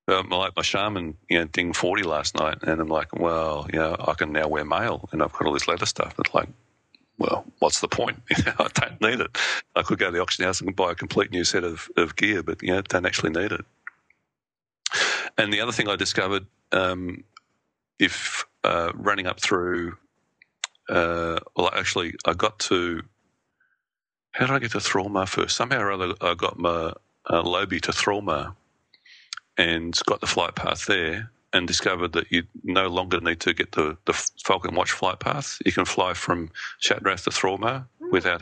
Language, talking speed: English, 195 wpm